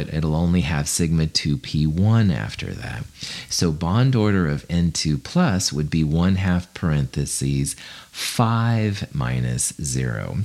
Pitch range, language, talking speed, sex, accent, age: 70-110 Hz, English, 120 wpm, male, American, 40-59